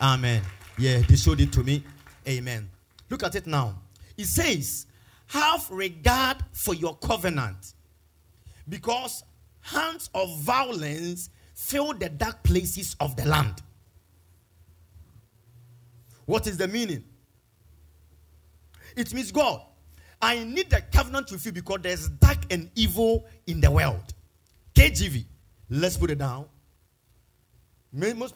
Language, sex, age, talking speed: English, male, 40-59, 120 wpm